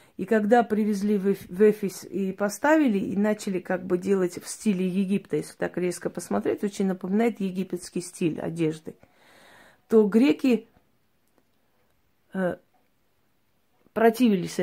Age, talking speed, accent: 30-49, 110 wpm, native